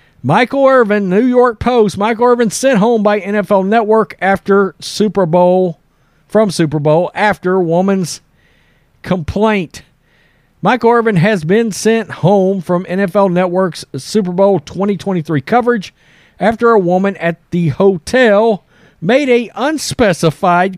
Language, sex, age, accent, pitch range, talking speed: English, male, 40-59, American, 175-220 Hz, 125 wpm